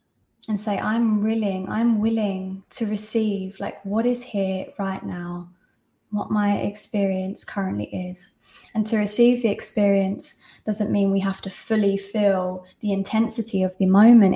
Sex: female